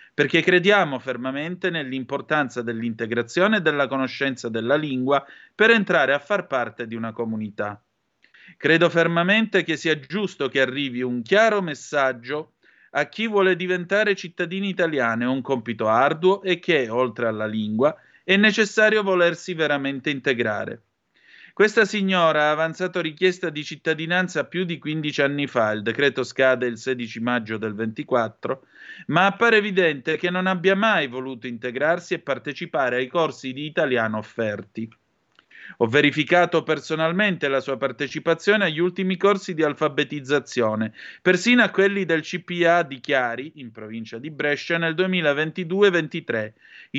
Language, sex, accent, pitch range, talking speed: Italian, male, native, 130-180 Hz, 135 wpm